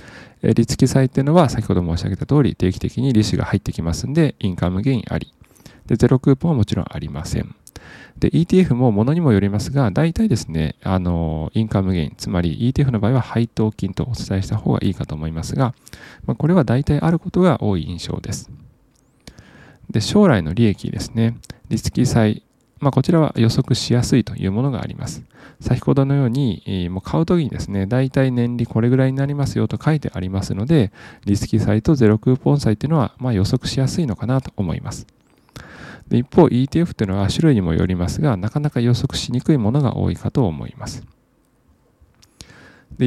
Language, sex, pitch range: Japanese, male, 100-140 Hz